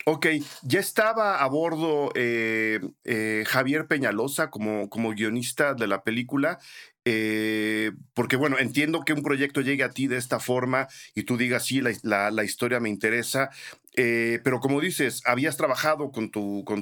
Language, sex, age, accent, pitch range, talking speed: Spanish, male, 50-69, Mexican, 115-145 Hz, 170 wpm